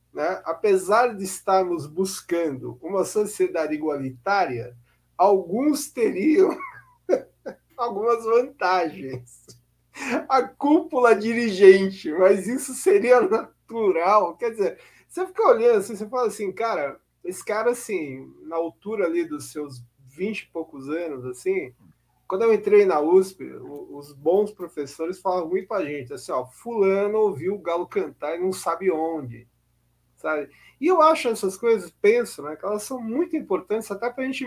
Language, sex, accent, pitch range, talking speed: Portuguese, male, Brazilian, 165-245 Hz, 145 wpm